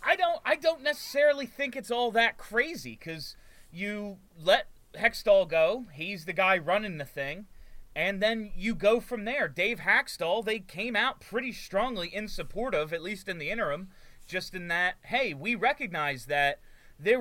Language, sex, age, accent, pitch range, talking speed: English, male, 30-49, American, 155-225 Hz, 175 wpm